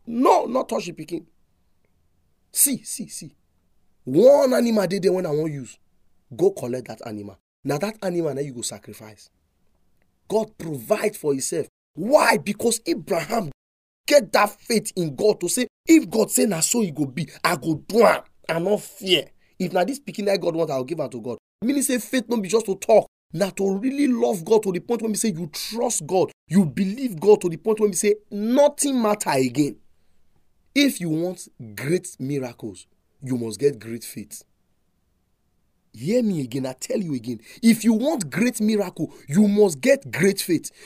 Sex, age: male, 30-49